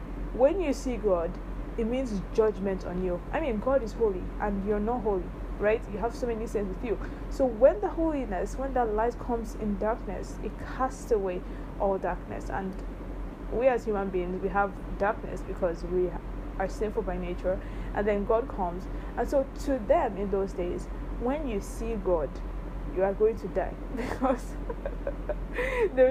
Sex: female